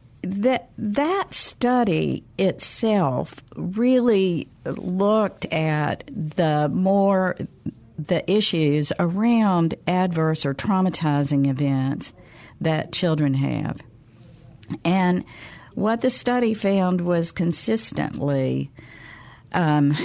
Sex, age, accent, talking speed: female, 60-79, American, 80 wpm